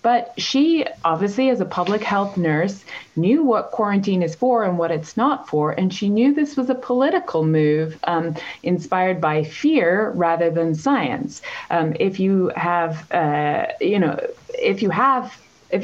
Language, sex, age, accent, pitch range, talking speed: English, female, 20-39, American, 165-245 Hz, 165 wpm